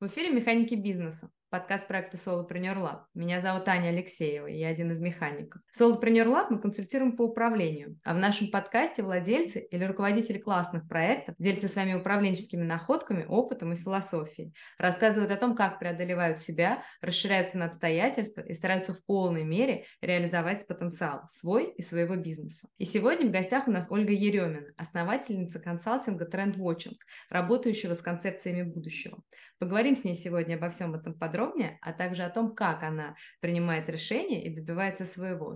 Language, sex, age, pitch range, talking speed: Russian, female, 20-39, 175-225 Hz, 160 wpm